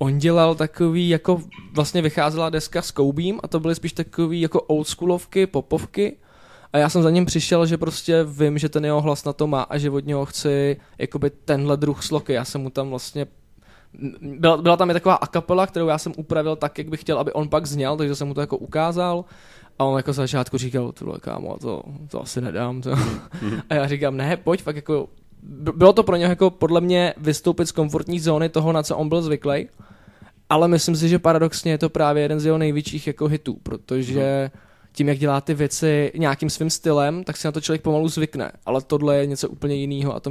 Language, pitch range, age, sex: Czech, 135-160 Hz, 20-39, male